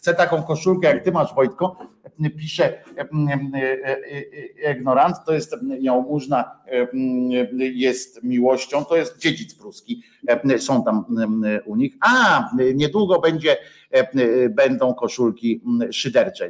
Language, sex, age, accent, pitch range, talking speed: Polish, male, 50-69, native, 100-140 Hz, 100 wpm